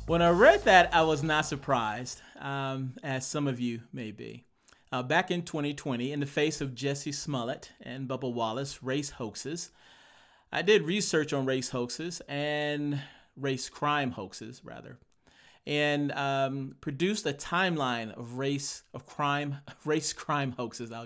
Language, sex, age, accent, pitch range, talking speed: English, male, 40-59, American, 130-160 Hz, 155 wpm